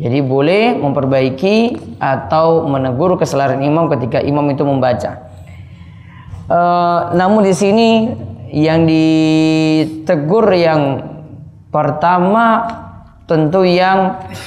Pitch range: 125-165 Hz